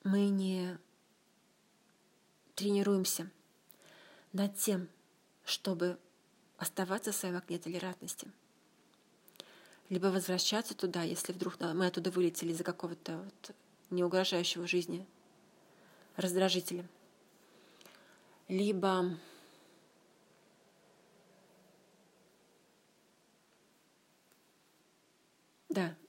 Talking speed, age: 60 wpm, 30-49